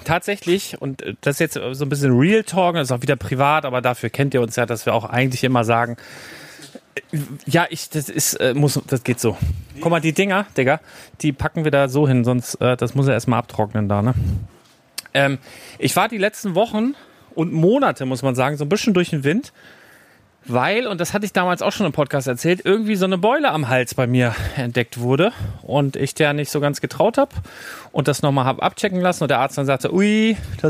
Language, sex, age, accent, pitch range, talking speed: German, male, 30-49, German, 125-155 Hz, 220 wpm